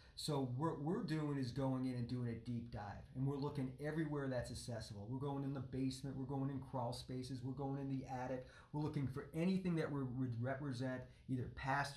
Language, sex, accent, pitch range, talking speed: English, male, American, 125-150 Hz, 210 wpm